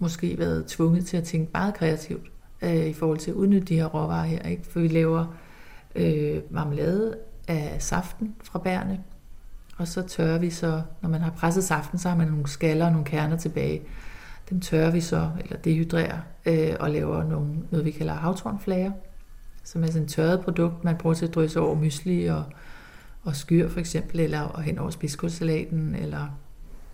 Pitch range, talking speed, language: 150-170 Hz, 185 wpm, Danish